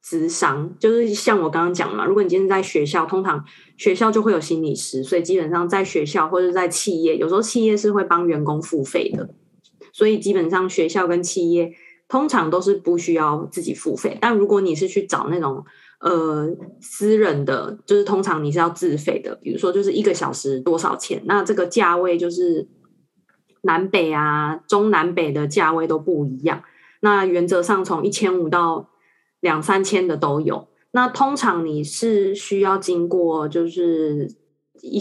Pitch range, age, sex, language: 165-210 Hz, 20-39, female, Chinese